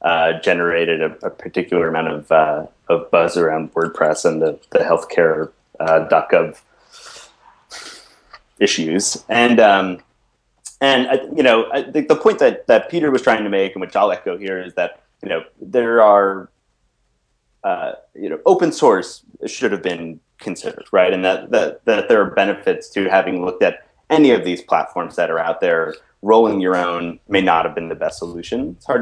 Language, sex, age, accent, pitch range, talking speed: English, male, 30-49, American, 85-125 Hz, 180 wpm